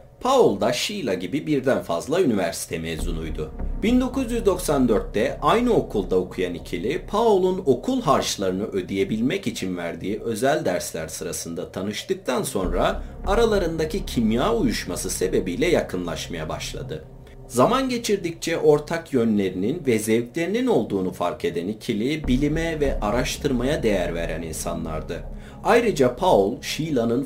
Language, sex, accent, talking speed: Turkish, male, native, 110 wpm